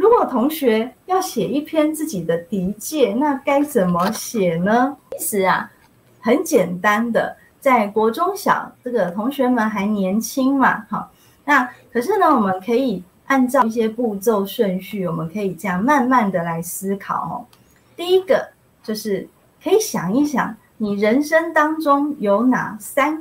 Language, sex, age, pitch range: Chinese, female, 30-49, 195-270 Hz